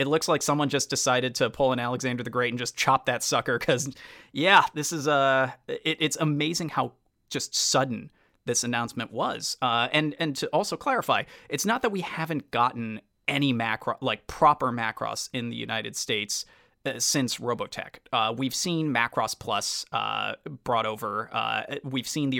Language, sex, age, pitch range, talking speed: English, male, 20-39, 115-140 Hz, 180 wpm